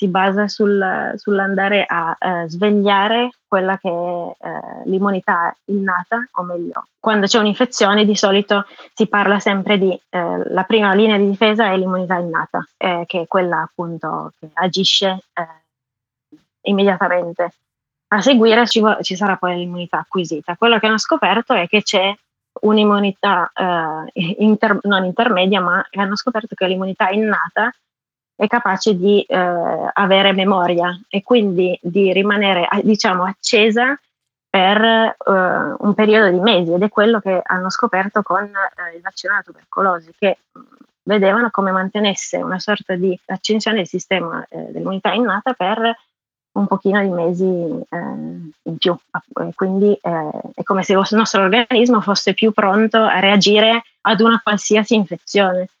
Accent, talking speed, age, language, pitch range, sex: native, 145 wpm, 20-39, Italian, 185-215 Hz, female